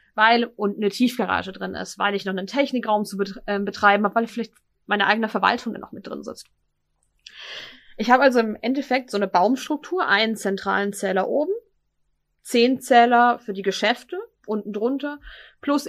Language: German